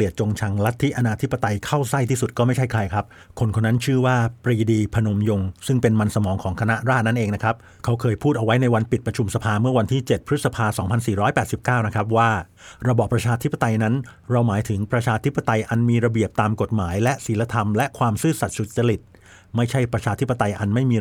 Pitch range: 105-125 Hz